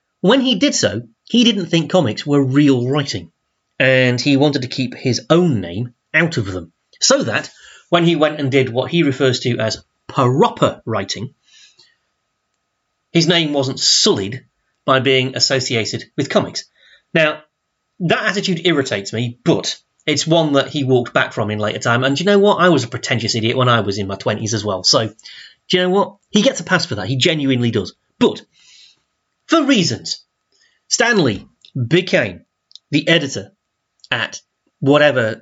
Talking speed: 175 wpm